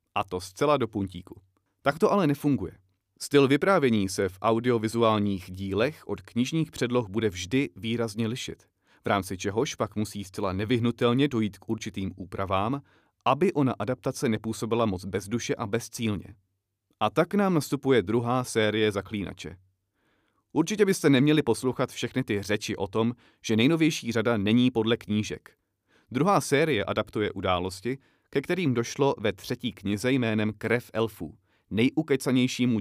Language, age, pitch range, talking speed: Czech, 30-49, 100-125 Hz, 140 wpm